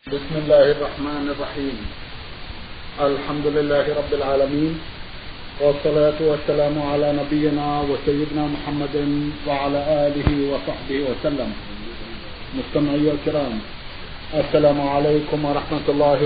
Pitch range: 140-150 Hz